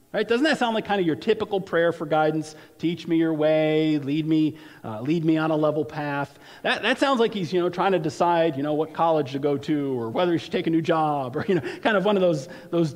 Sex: male